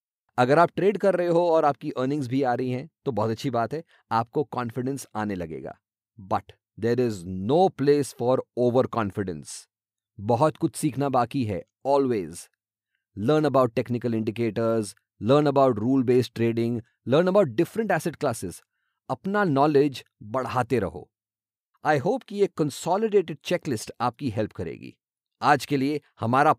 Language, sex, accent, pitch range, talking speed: English, male, Indian, 115-160 Hz, 145 wpm